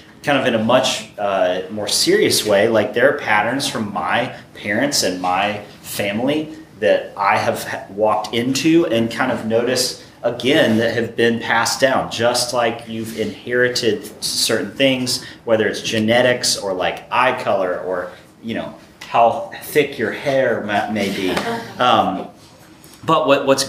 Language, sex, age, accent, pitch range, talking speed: English, male, 30-49, American, 110-135 Hz, 150 wpm